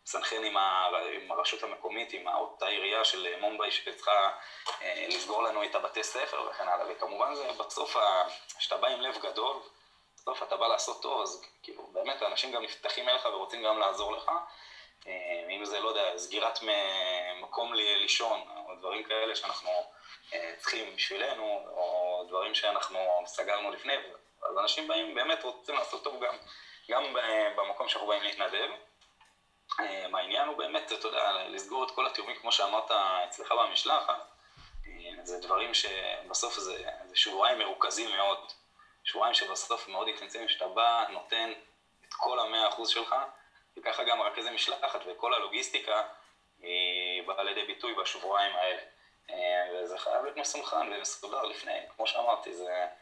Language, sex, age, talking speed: Hebrew, male, 20-39, 145 wpm